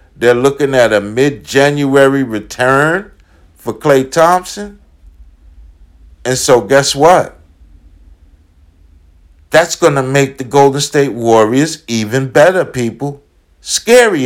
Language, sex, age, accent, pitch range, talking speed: English, male, 50-69, American, 80-135 Hz, 105 wpm